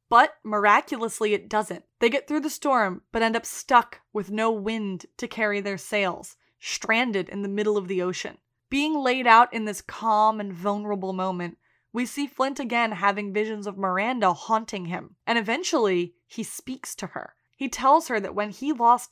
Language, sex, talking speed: English, female, 185 wpm